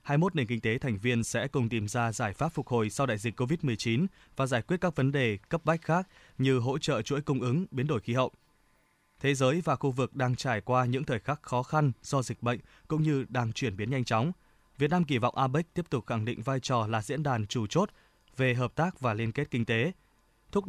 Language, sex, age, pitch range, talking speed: Vietnamese, male, 20-39, 120-145 Hz, 245 wpm